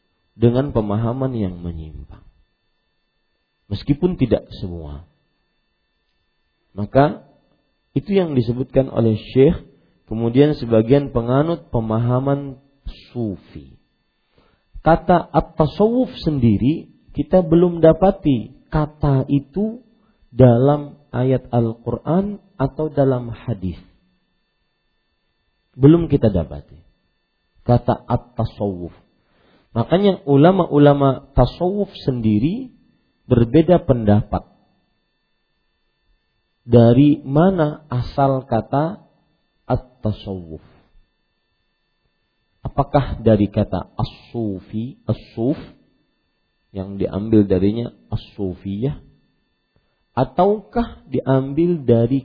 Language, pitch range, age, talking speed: Malay, 105-150 Hz, 40-59, 70 wpm